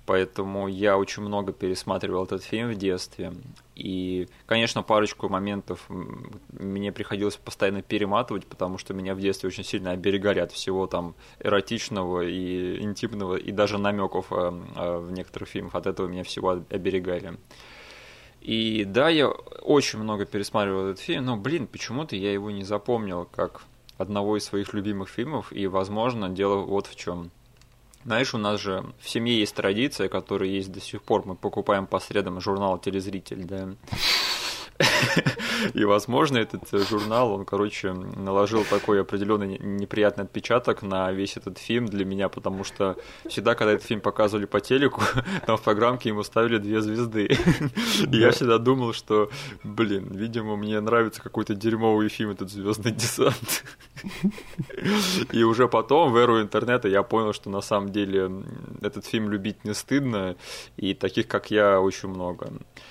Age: 20-39